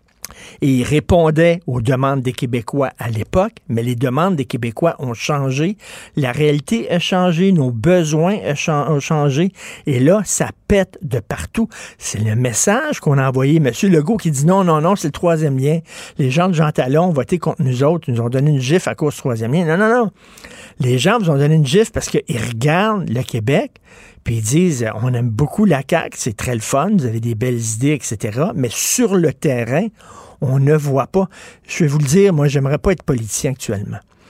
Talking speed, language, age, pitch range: 215 wpm, French, 50-69, 130-170 Hz